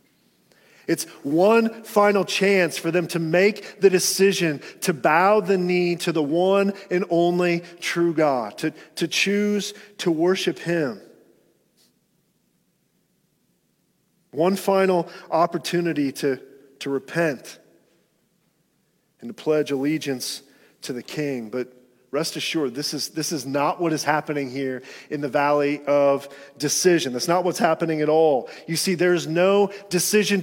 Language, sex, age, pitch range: English, male, 40-59, 145-185 Hz